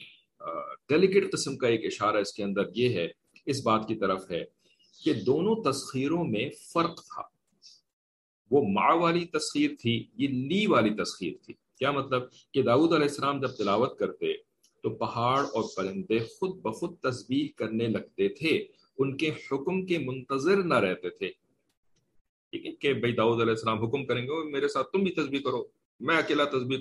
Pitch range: 120-190 Hz